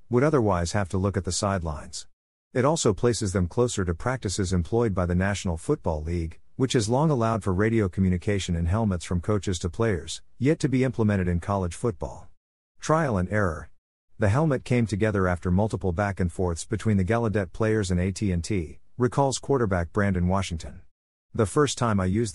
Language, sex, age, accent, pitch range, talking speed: English, male, 50-69, American, 90-115 Hz, 185 wpm